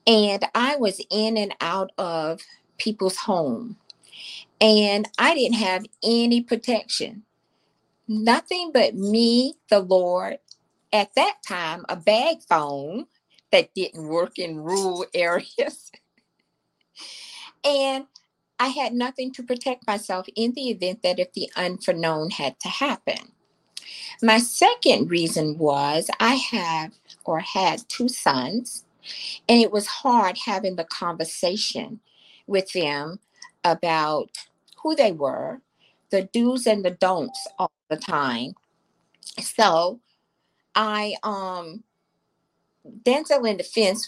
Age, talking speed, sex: 50-69, 115 wpm, female